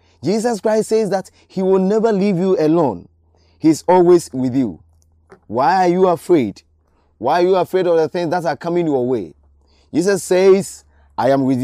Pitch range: 130-190 Hz